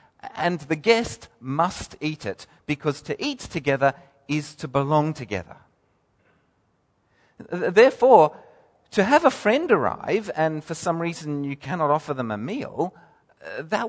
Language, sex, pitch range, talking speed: English, male, 150-225 Hz, 135 wpm